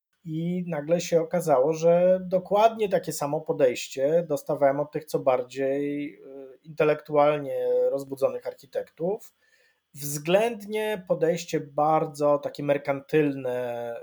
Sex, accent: male, native